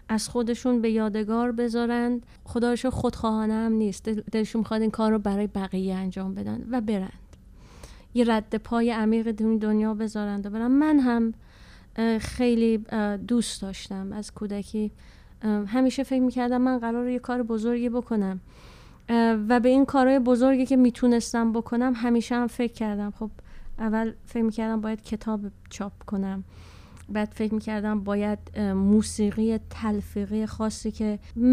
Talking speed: 135 wpm